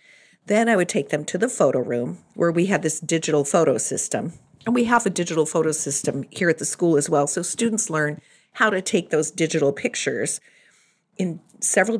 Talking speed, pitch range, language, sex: 200 wpm, 160-220 Hz, English, female